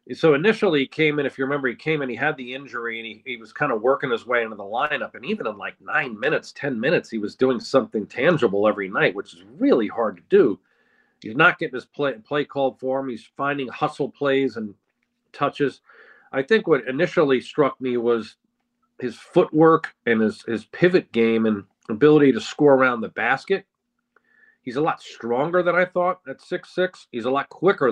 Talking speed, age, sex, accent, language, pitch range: 210 wpm, 40-59, male, American, English, 115-150 Hz